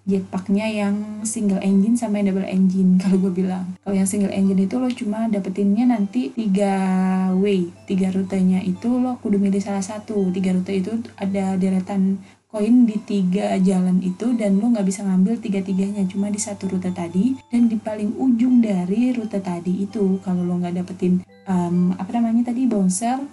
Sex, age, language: female, 20-39, Indonesian